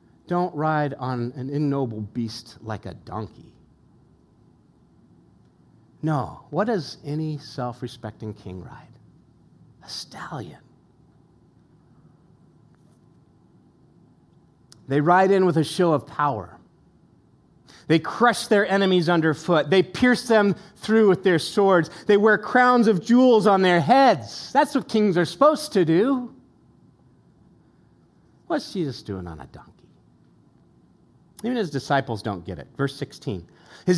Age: 40-59